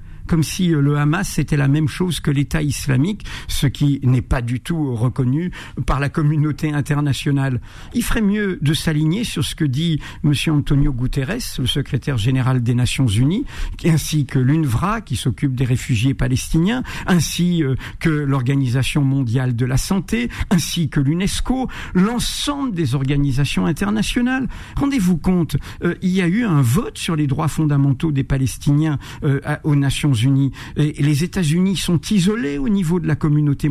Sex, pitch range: male, 135-180 Hz